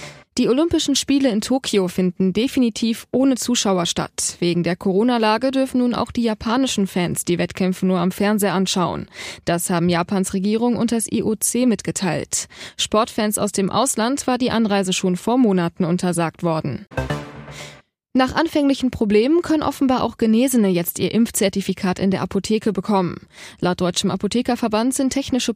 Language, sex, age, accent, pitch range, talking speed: German, female, 20-39, German, 185-245 Hz, 150 wpm